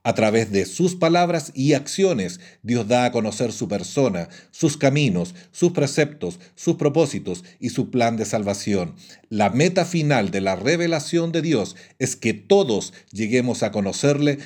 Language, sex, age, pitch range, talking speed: Spanish, male, 40-59, 105-150 Hz, 160 wpm